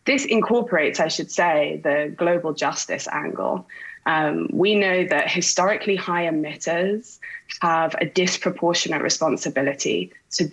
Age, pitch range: 20-39, 165-205 Hz